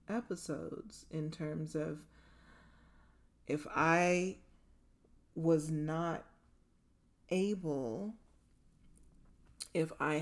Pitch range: 150-180 Hz